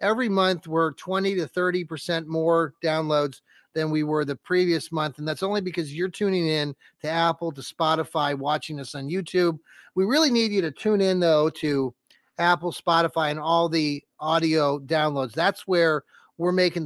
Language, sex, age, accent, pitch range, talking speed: English, male, 30-49, American, 155-185 Hz, 175 wpm